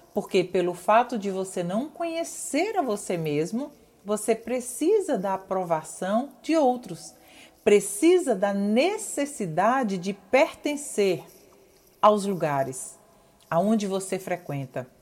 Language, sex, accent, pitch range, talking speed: Portuguese, female, Brazilian, 185-270 Hz, 105 wpm